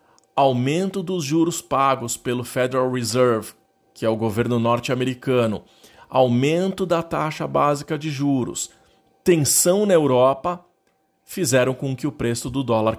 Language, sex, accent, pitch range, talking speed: Portuguese, male, Brazilian, 120-165 Hz, 130 wpm